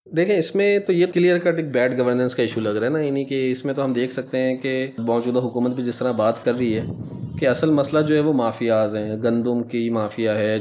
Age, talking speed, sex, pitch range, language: 20-39, 260 wpm, male, 115-150 Hz, Urdu